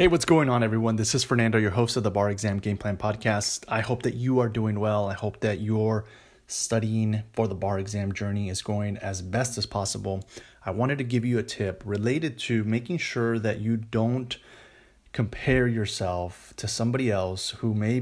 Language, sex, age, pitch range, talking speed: English, male, 30-49, 100-115 Hz, 205 wpm